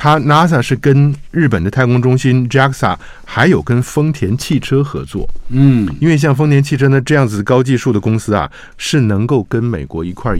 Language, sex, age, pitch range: Chinese, male, 50-69, 95-125 Hz